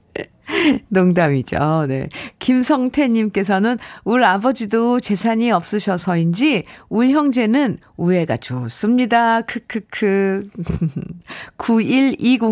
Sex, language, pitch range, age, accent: female, Korean, 180-245 Hz, 50-69, native